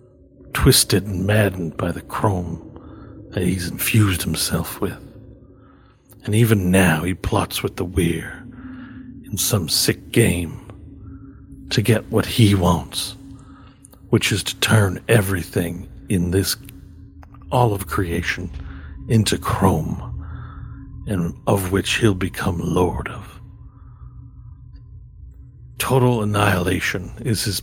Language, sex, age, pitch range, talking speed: English, male, 60-79, 90-110 Hz, 110 wpm